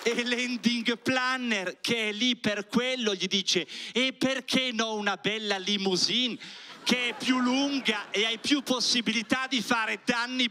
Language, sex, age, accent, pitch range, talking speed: Italian, male, 40-59, native, 210-255 Hz, 155 wpm